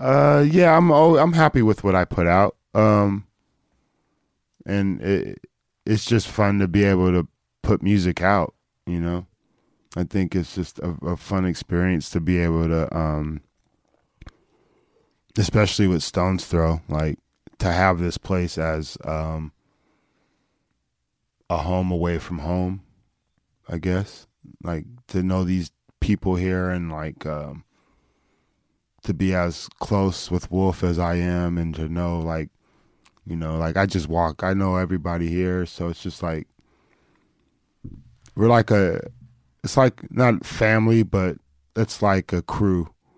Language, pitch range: English, 85-100 Hz